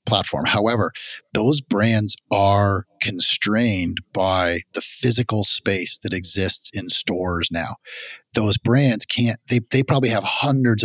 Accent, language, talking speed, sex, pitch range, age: American, English, 125 wpm, male, 95-115 Hz, 30-49